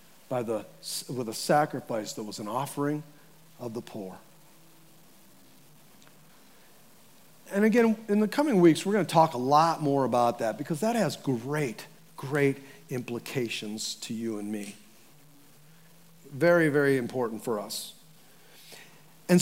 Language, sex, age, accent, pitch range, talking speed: English, male, 40-59, American, 135-180 Hz, 125 wpm